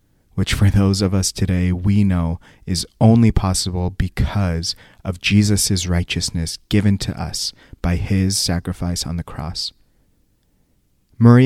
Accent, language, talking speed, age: American, English, 130 wpm, 30-49